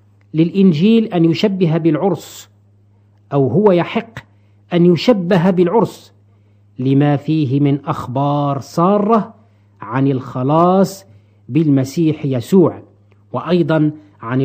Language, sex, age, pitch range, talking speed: Arabic, male, 50-69, 115-175 Hz, 85 wpm